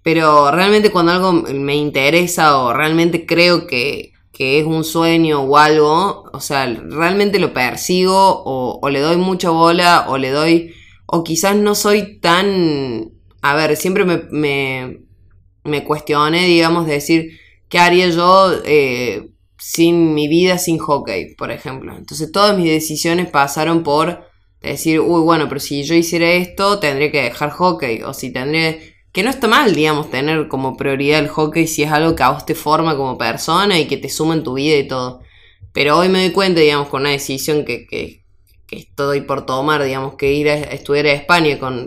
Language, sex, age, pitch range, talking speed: Spanish, female, 20-39, 140-170 Hz, 185 wpm